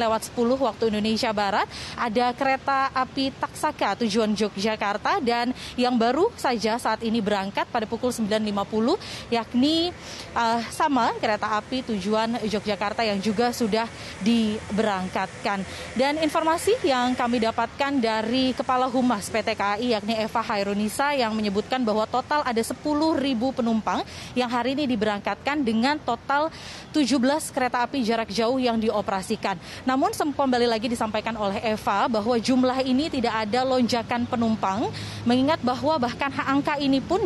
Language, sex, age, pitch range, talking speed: Indonesian, female, 20-39, 220-265 Hz, 135 wpm